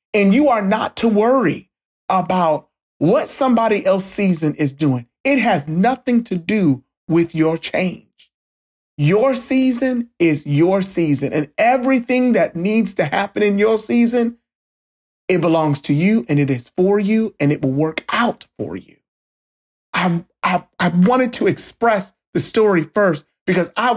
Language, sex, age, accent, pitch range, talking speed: English, male, 30-49, American, 155-230 Hz, 155 wpm